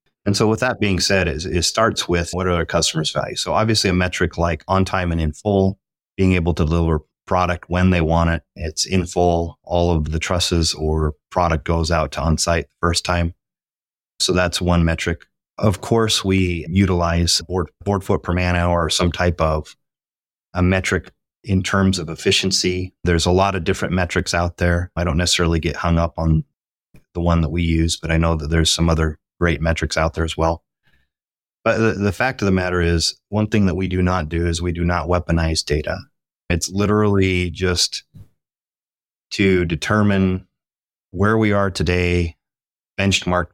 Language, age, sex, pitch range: English, 30-49, male, 85-95 Hz